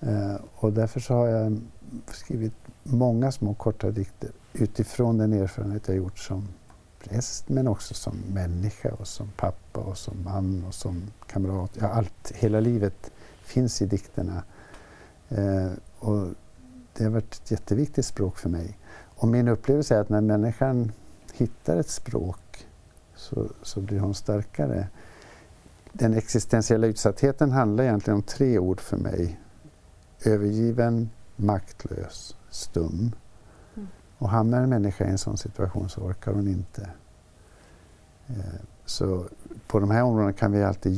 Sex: male